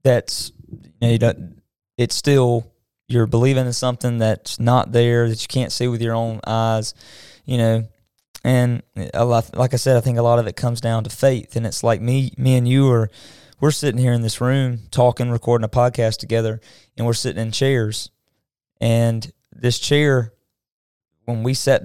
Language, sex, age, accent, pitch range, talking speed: English, male, 20-39, American, 115-130 Hz, 190 wpm